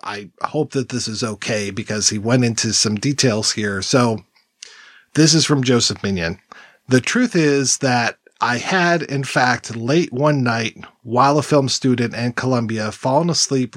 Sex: male